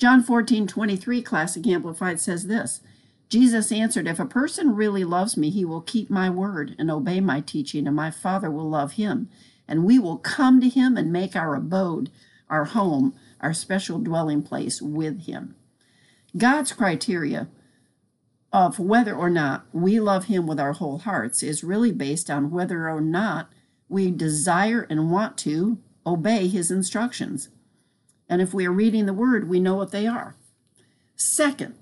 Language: English